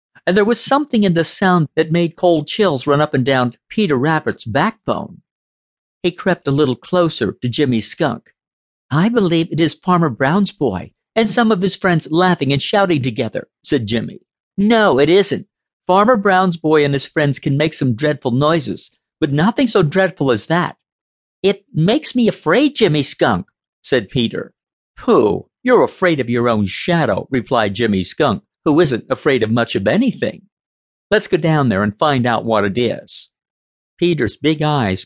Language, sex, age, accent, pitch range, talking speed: English, male, 50-69, American, 135-200 Hz, 175 wpm